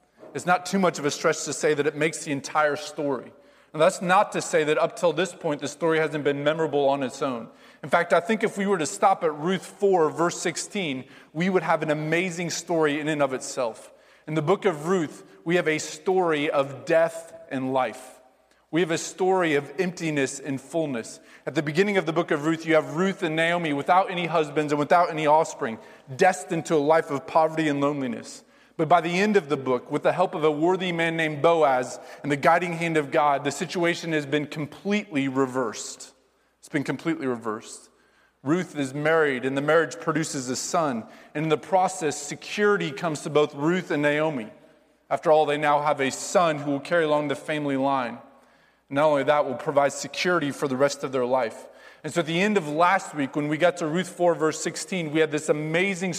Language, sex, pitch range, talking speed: English, male, 145-175 Hz, 220 wpm